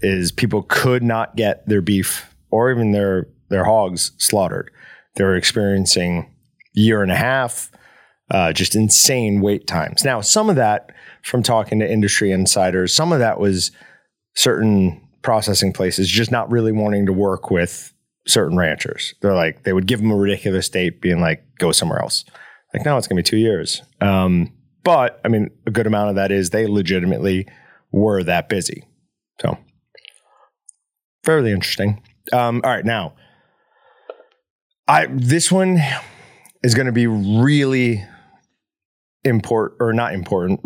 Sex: male